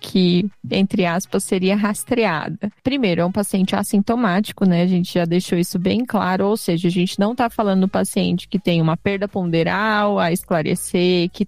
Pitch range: 185-225 Hz